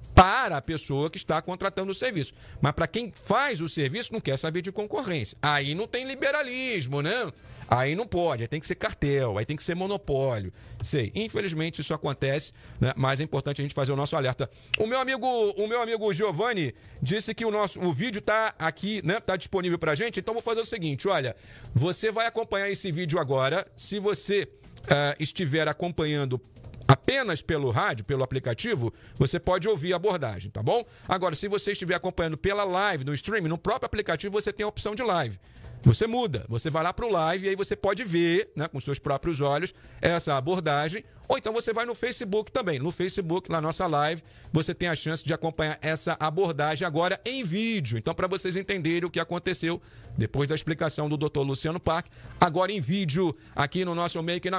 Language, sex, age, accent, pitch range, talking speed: Portuguese, male, 50-69, Brazilian, 140-195 Hz, 200 wpm